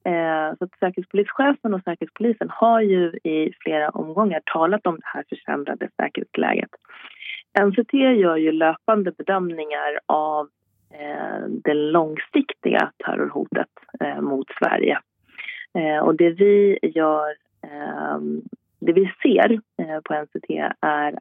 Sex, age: female, 30-49